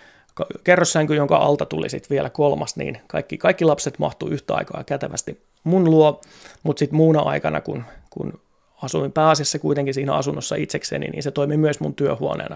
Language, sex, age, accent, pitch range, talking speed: Finnish, male, 30-49, native, 145-165 Hz, 165 wpm